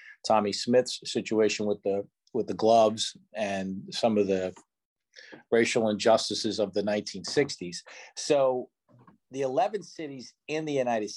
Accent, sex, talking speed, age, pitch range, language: American, male, 130 wpm, 40-59, 110-135 Hz, English